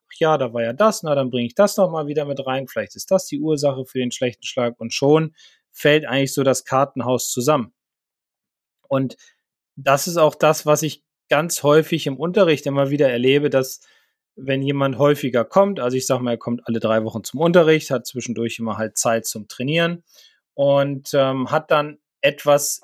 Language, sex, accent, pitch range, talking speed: German, male, German, 130-165 Hz, 190 wpm